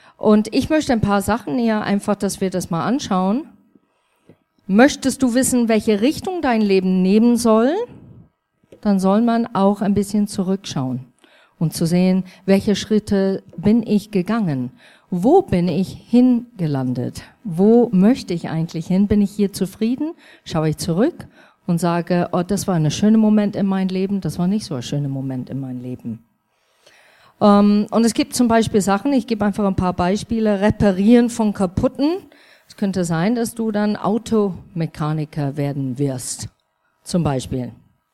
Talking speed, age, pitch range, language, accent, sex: 155 wpm, 50-69, 165-225 Hz, German, German, female